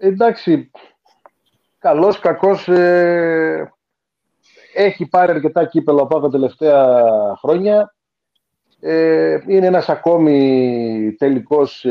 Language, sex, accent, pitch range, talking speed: Greek, male, native, 120-160 Hz, 75 wpm